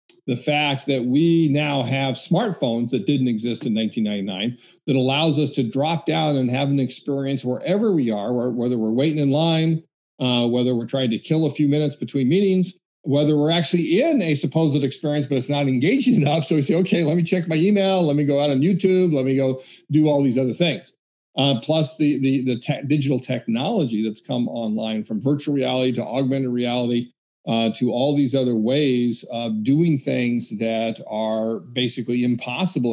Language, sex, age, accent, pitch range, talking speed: English, male, 50-69, American, 120-150 Hz, 190 wpm